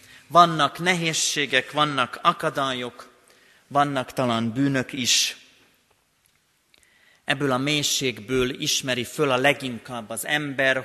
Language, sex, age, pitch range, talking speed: Hungarian, male, 30-49, 135-160 Hz, 95 wpm